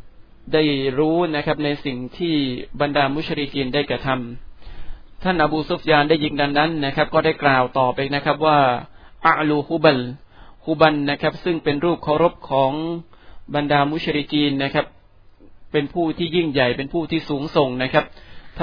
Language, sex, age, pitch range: Thai, male, 20-39, 135-155 Hz